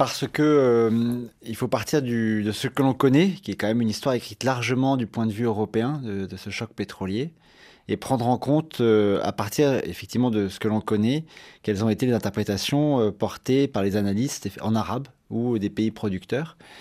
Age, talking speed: 30-49, 205 wpm